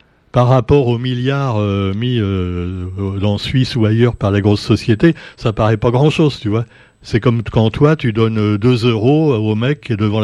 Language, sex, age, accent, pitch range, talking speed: French, male, 60-79, French, 105-150 Hz, 195 wpm